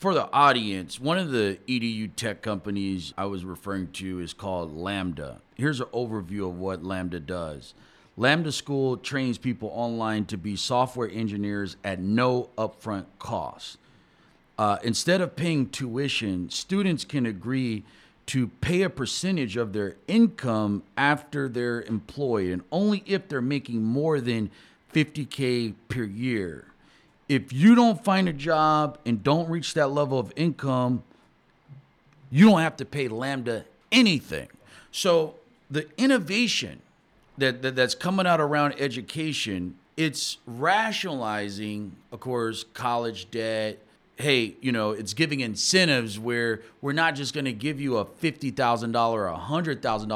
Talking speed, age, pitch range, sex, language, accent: 140 wpm, 40-59, 105-145 Hz, male, English, American